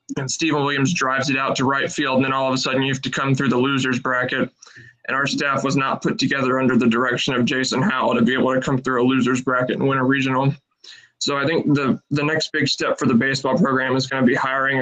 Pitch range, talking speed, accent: 130-140 Hz, 265 wpm, American